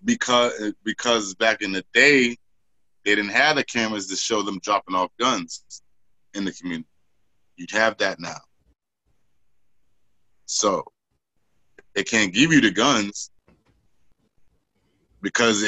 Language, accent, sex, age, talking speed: English, American, male, 20-39, 125 wpm